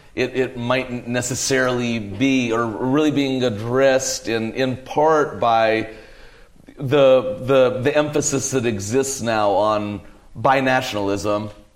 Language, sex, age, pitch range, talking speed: English, male, 40-59, 115-145 Hz, 110 wpm